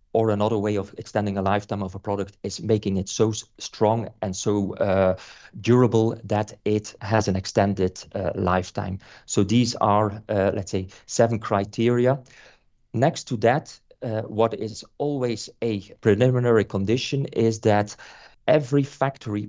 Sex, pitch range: male, 100-115 Hz